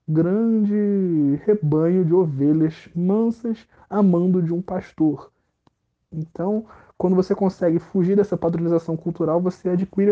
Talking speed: 115 wpm